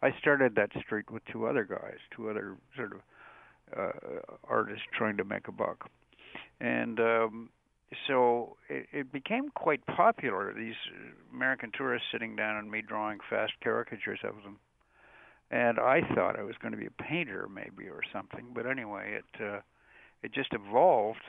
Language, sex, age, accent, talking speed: English, male, 60-79, American, 165 wpm